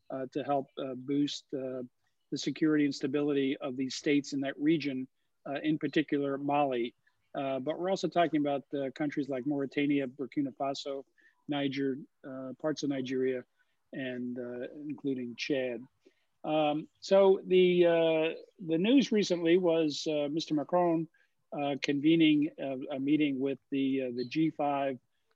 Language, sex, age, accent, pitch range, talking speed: English, male, 50-69, American, 135-160 Hz, 150 wpm